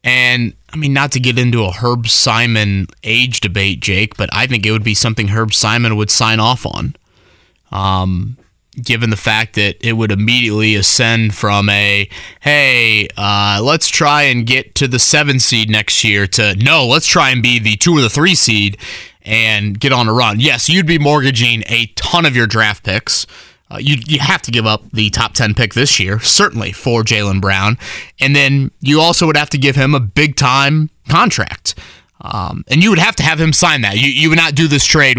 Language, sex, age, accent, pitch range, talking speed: English, male, 20-39, American, 110-140 Hz, 210 wpm